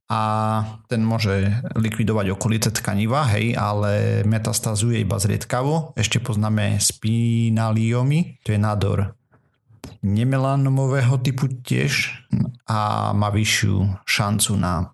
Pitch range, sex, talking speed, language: 105-125 Hz, male, 100 wpm, Slovak